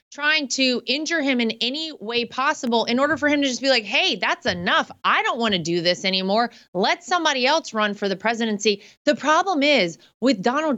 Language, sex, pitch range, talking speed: English, female, 180-250 Hz, 205 wpm